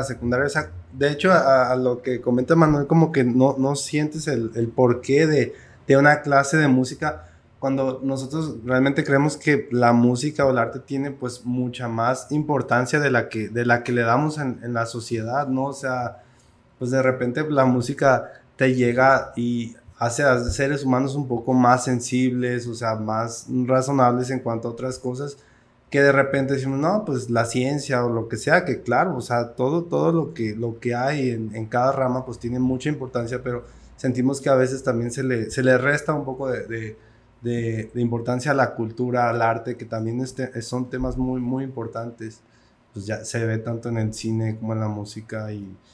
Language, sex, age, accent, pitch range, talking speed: Spanish, male, 20-39, Mexican, 115-135 Hz, 200 wpm